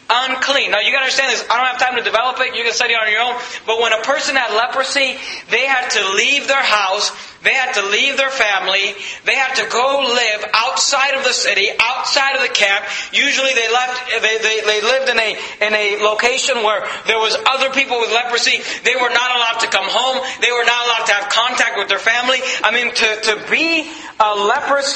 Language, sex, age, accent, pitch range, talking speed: English, male, 40-59, American, 210-260 Hz, 225 wpm